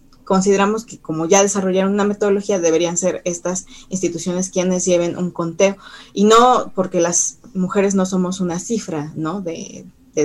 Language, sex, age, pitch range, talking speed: Spanish, female, 30-49, 180-230 Hz, 160 wpm